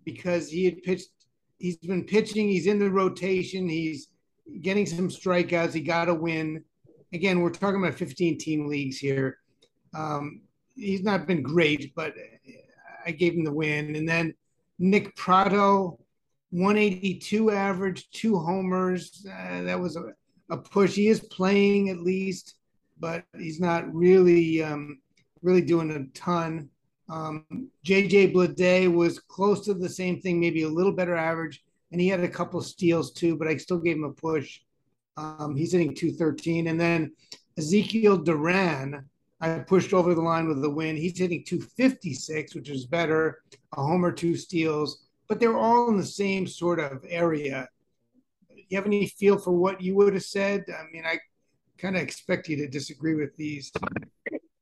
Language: English